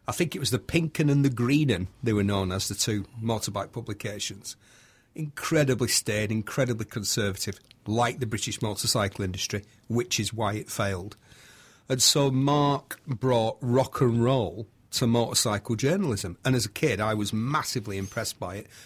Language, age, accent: English, 40-59, British